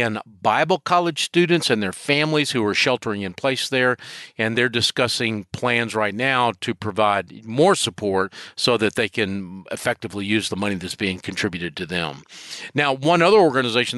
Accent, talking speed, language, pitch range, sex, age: American, 165 wpm, English, 110-135 Hz, male, 50-69